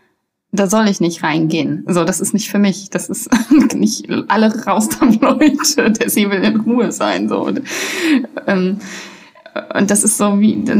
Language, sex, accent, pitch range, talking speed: German, female, German, 180-225 Hz, 180 wpm